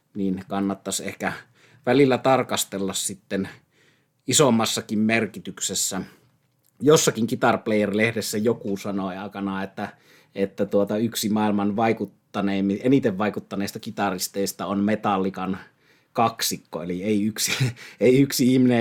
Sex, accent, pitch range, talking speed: male, native, 100-115 Hz, 95 wpm